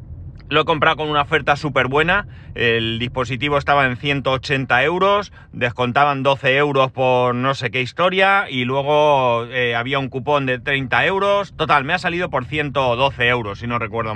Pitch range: 125-150 Hz